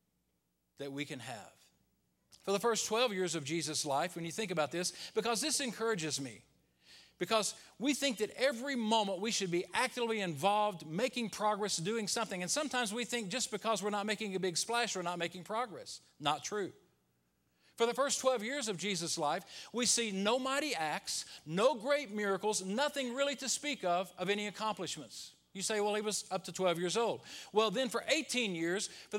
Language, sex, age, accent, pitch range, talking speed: English, male, 50-69, American, 185-250 Hz, 195 wpm